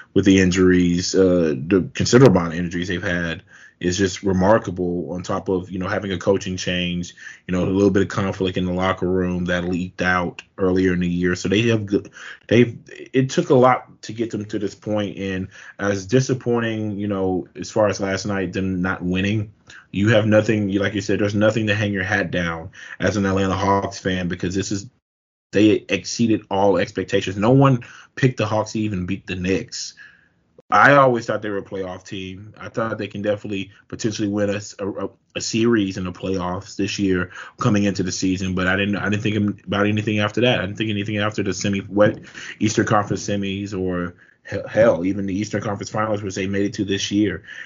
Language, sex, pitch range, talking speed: English, male, 90-105 Hz, 210 wpm